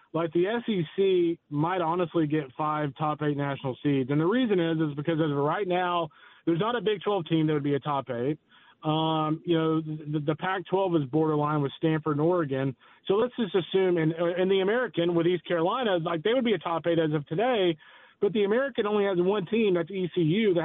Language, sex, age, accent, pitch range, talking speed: English, male, 30-49, American, 150-185 Hz, 225 wpm